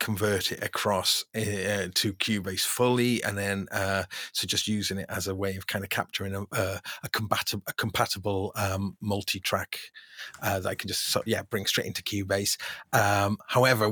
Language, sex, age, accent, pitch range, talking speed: English, male, 30-49, British, 100-115 Hz, 170 wpm